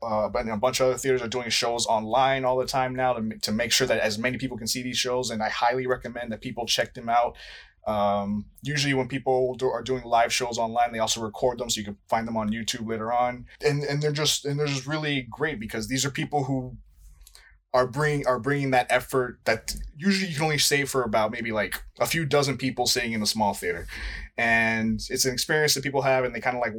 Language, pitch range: English, 115-135 Hz